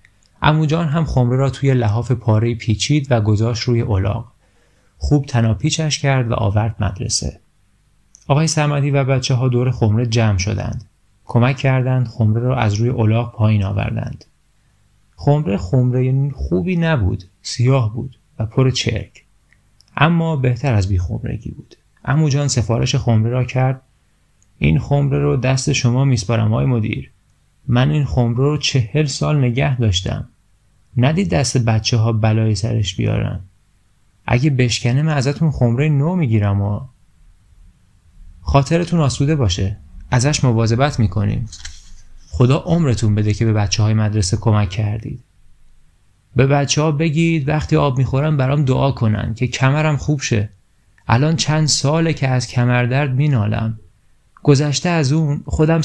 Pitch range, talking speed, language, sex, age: 105-140 Hz, 135 wpm, Persian, male, 30-49